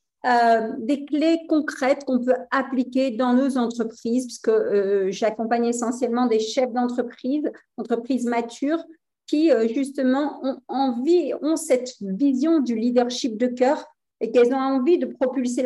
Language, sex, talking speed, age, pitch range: French, female, 140 wpm, 50-69, 230-275 Hz